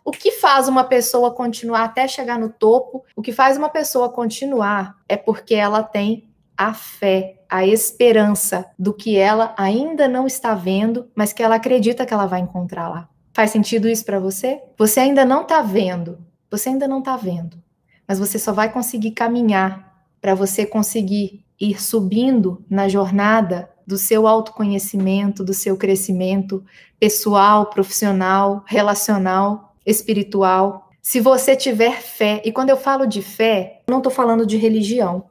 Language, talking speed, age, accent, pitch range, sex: Portuguese, 160 wpm, 20-39, Brazilian, 200-250 Hz, female